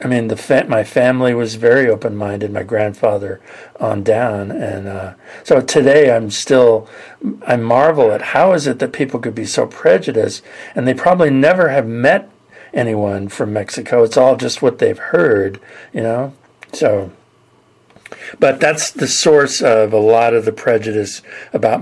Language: English